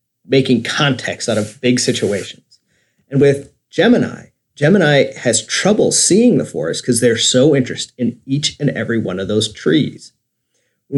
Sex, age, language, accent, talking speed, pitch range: male, 30-49, English, American, 155 wpm, 120-155 Hz